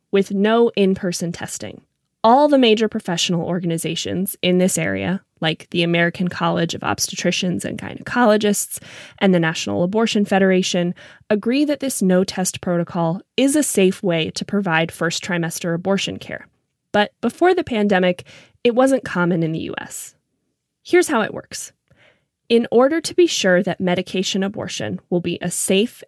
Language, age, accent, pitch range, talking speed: English, 20-39, American, 175-215 Hz, 150 wpm